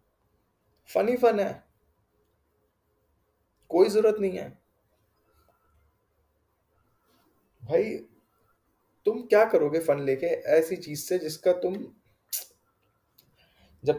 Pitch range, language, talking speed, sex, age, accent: 110-170 Hz, Hindi, 85 wpm, male, 20-39, native